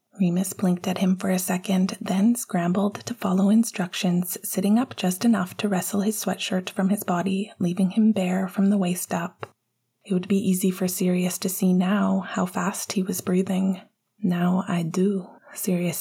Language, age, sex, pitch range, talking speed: English, 20-39, female, 180-205 Hz, 180 wpm